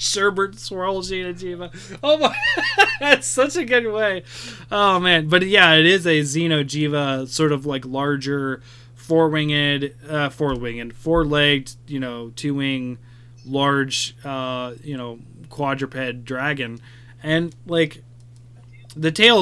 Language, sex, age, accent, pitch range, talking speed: English, male, 20-39, American, 125-155 Hz, 125 wpm